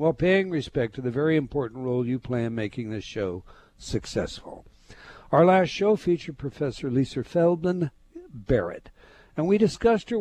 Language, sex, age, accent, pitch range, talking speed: English, male, 60-79, American, 125-170 Hz, 160 wpm